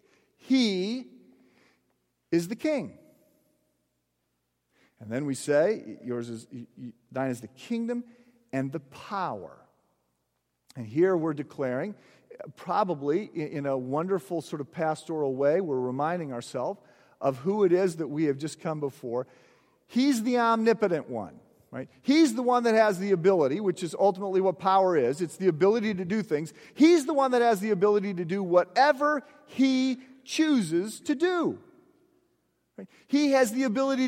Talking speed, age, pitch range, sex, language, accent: 150 wpm, 40-59, 170-275 Hz, male, English, American